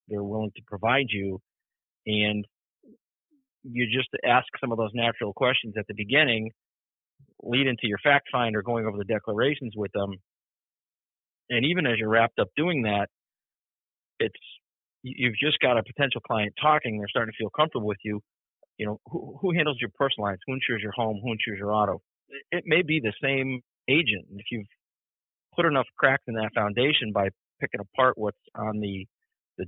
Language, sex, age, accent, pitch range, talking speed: English, male, 40-59, American, 100-125 Hz, 180 wpm